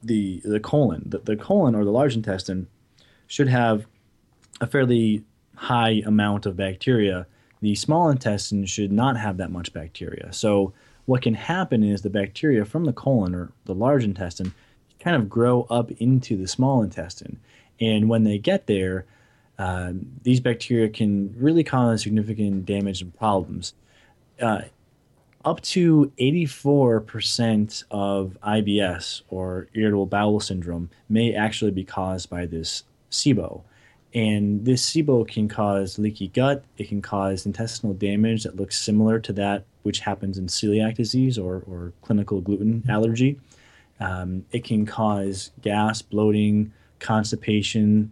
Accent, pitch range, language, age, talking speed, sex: American, 100-120 Hz, English, 20-39, 140 wpm, male